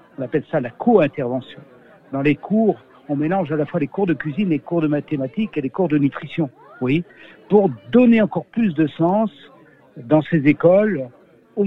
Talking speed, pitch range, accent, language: 190 wpm, 145-180 Hz, French, French